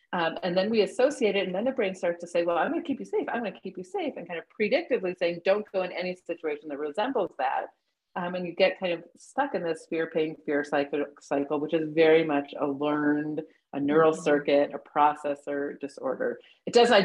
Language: English